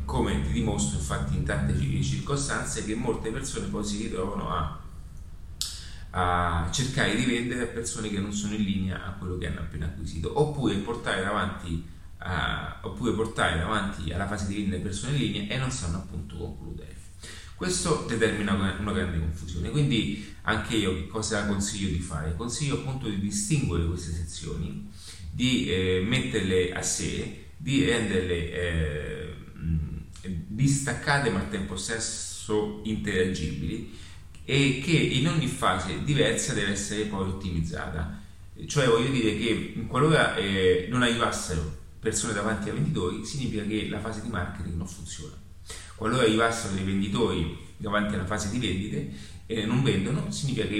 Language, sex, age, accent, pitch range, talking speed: Italian, male, 30-49, native, 85-110 Hz, 150 wpm